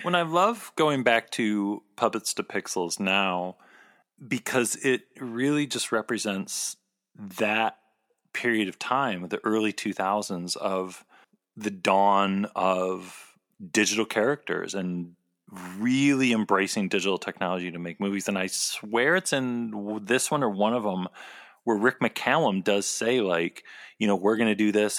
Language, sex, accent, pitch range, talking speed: English, male, American, 100-130 Hz, 145 wpm